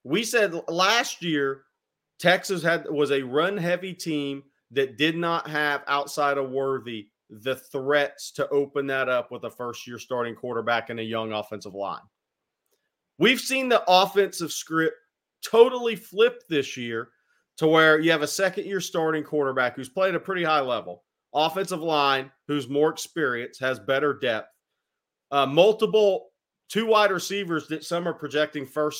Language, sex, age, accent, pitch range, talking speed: English, male, 40-59, American, 135-175 Hz, 155 wpm